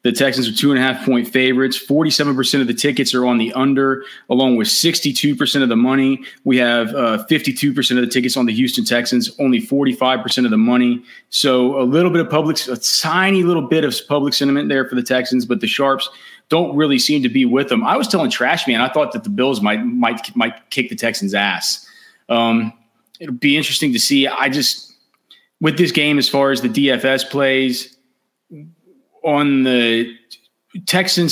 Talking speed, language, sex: 205 wpm, English, male